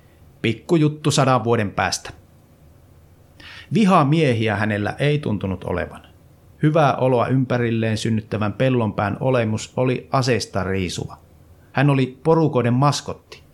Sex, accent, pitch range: male, native, 100-145 Hz